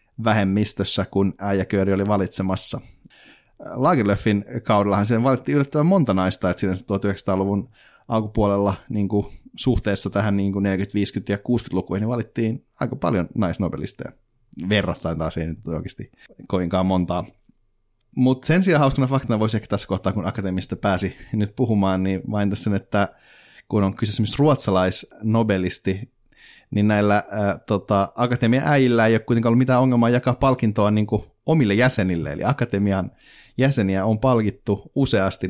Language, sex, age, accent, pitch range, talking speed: Finnish, male, 30-49, native, 95-120 Hz, 130 wpm